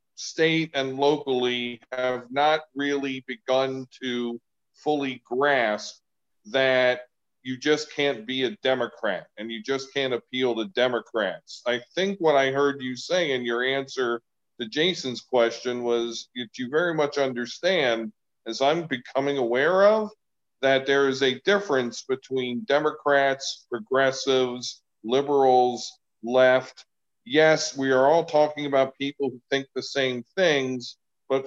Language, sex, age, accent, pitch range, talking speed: English, male, 40-59, American, 125-140 Hz, 135 wpm